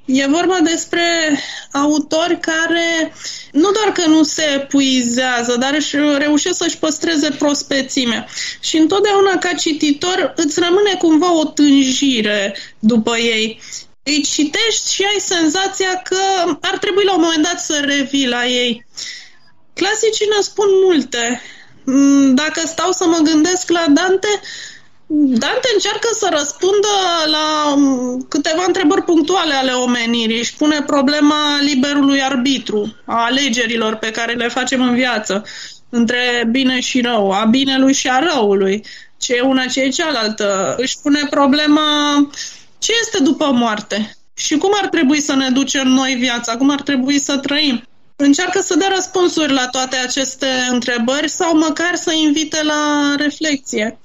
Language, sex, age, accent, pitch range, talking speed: Romanian, female, 20-39, native, 260-345 Hz, 140 wpm